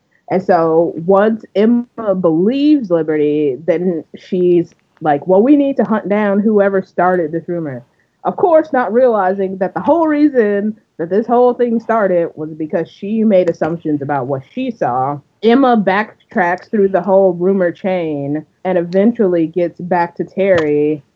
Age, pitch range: 20-39, 165-200 Hz